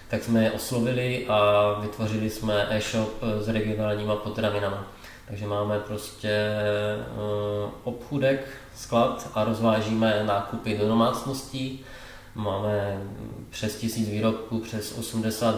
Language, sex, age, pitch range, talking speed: Czech, male, 20-39, 105-115 Hz, 105 wpm